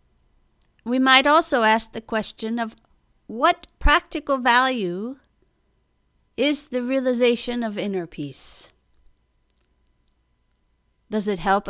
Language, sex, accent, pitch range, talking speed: English, female, American, 185-245 Hz, 95 wpm